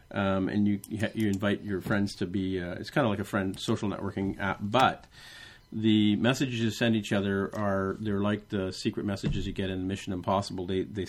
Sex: male